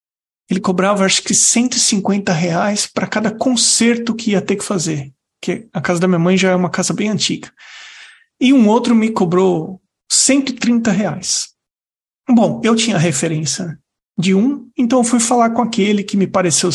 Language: Portuguese